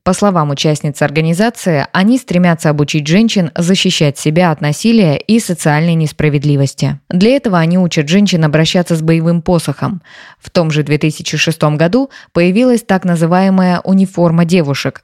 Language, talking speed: Russian, 135 wpm